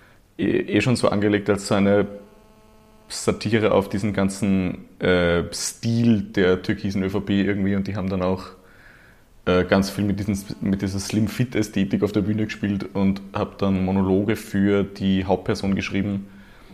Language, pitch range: German, 95-110 Hz